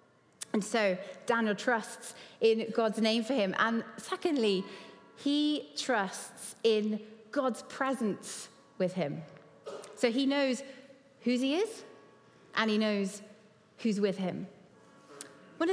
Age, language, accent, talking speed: 30-49, English, British, 120 wpm